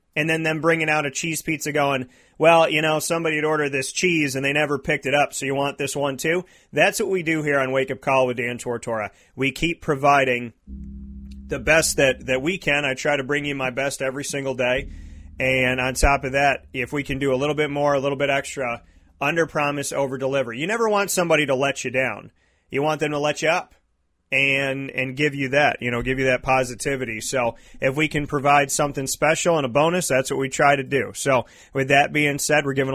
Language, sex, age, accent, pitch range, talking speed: English, male, 30-49, American, 130-150 Hz, 235 wpm